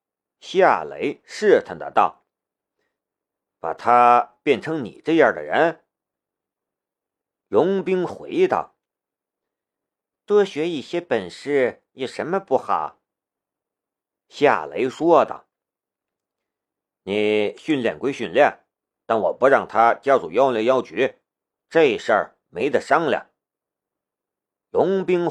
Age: 50-69